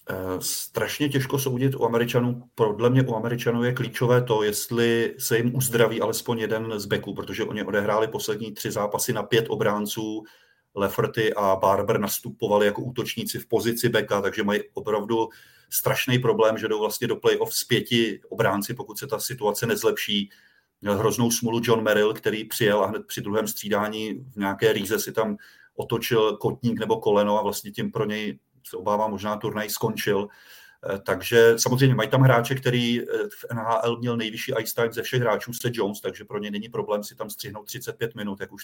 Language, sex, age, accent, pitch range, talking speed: Czech, male, 30-49, native, 105-120 Hz, 185 wpm